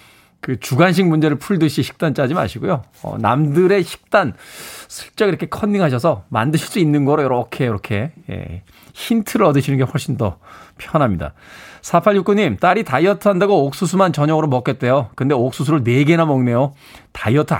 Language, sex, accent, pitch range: Korean, male, native, 130-195 Hz